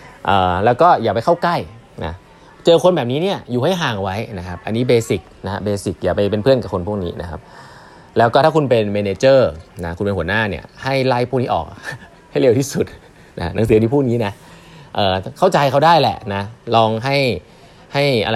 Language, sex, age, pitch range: Thai, male, 20-39, 105-145 Hz